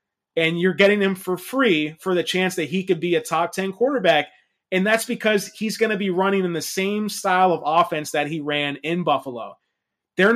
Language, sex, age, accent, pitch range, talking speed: English, male, 30-49, American, 160-205 Hz, 215 wpm